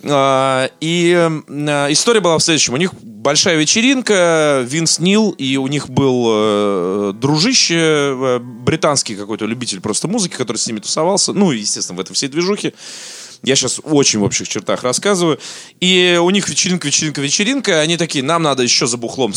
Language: Russian